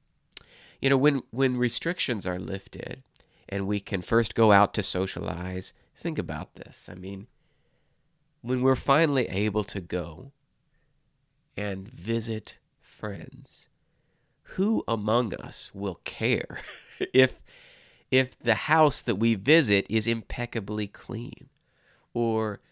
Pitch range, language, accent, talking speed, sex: 100-145 Hz, English, American, 120 wpm, male